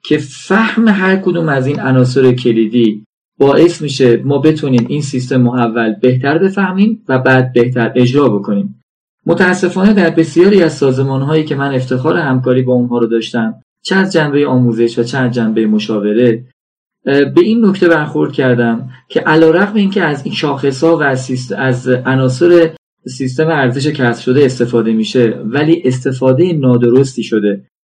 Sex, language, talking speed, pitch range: male, Persian, 150 wpm, 120-160 Hz